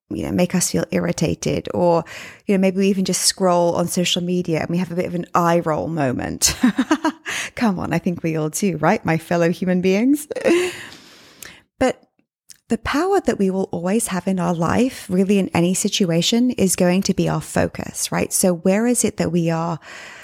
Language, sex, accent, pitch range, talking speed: English, female, British, 175-240 Hz, 200 wpm